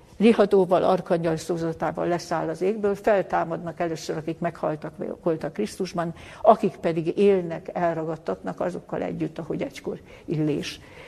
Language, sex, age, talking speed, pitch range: Hungarian, female, 60-79, 110 wpm, 160-190 Hz